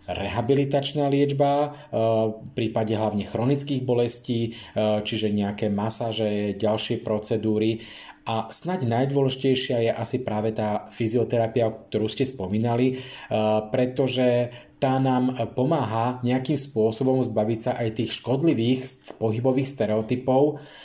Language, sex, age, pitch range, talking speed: Slovak, male, 20-39, 110-130 Hz, 105 wpm